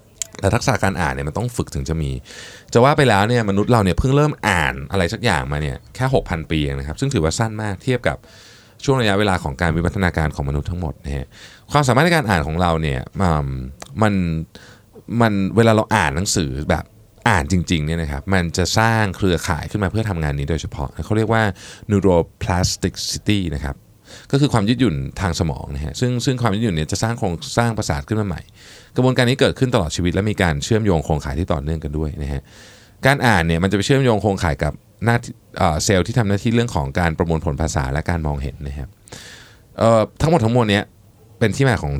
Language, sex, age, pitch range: Thai, male, 20-39, 80-115 Hz